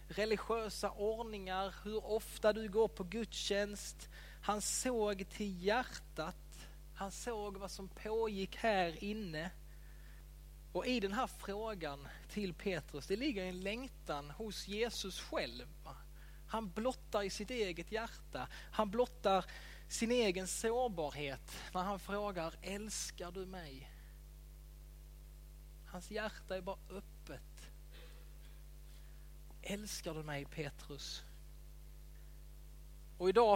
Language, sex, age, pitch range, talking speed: Swedish, male, 20-39, 175-210 Hz, 110 wpm